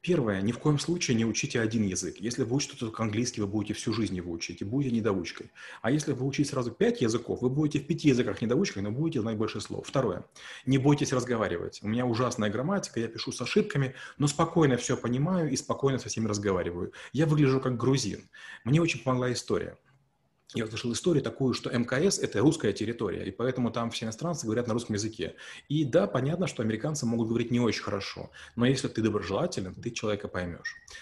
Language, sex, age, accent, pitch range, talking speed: Russian, male, 30-49, native, 110-135 Hz, 205 wpm